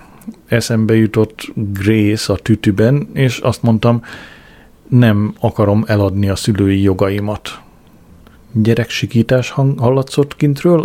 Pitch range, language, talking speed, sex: 100-120 Hz, Hungarian, 95 wpm, male